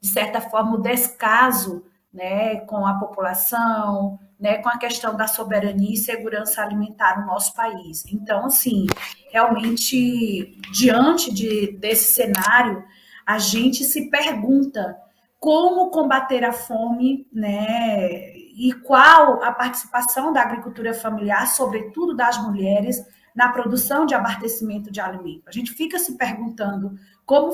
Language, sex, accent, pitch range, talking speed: Portuguese, female, Brazilian, 210-265 Hz, 130 wpm